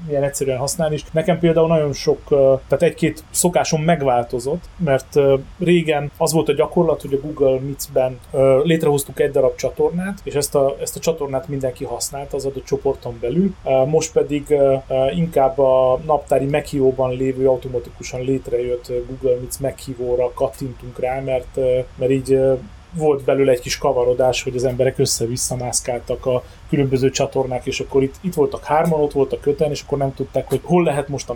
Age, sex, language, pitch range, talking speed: 30-49, male, Hungarian, 130-150 Hz, 160 wpm